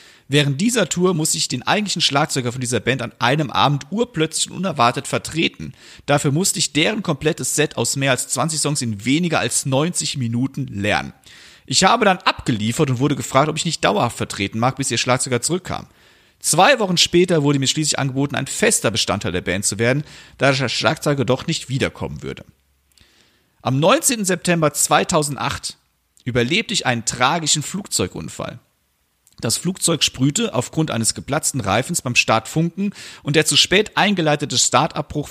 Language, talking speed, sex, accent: German, 165 wpm, male, German